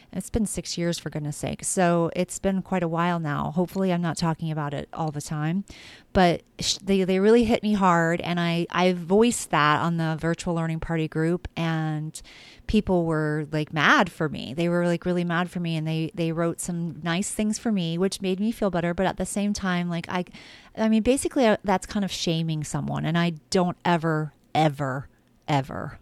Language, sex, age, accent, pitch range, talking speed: English, female, 30-49, American, 155-185 Hz, 210 wpm